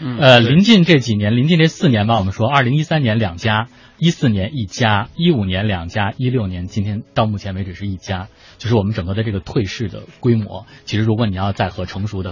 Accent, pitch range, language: native, 100-130 Hz, Chinese